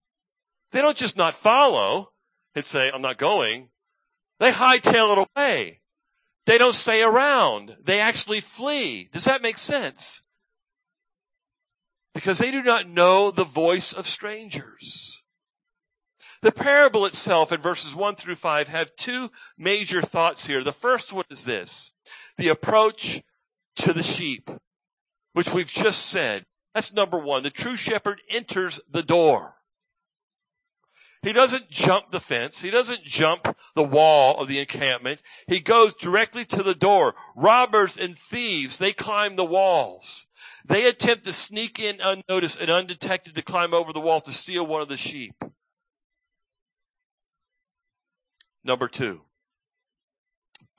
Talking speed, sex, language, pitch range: 140 wpm, male, English, 170-250 Hz